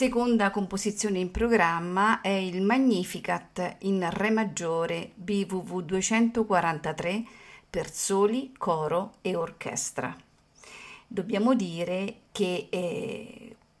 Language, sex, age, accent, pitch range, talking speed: Italian, female, 40-59, native, 175-215 Hz, 90 wpm